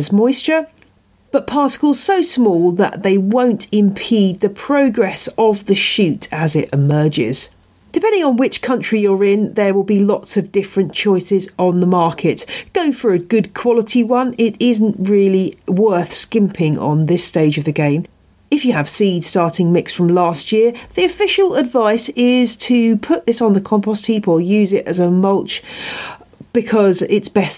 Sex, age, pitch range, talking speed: female, 40-59, 175-245 Hz, 170 wpm